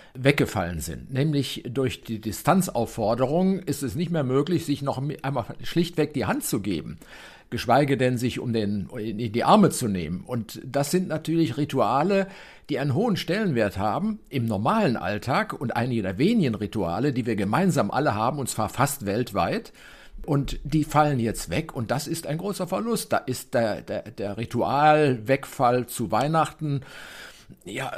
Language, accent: German, German